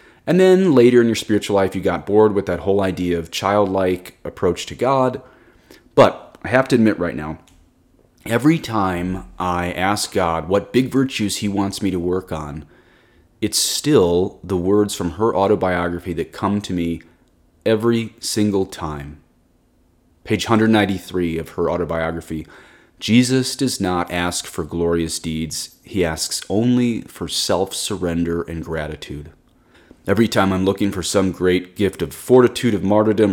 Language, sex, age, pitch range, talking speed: English, male, 30-49, 85-105 Hz, 155 wpm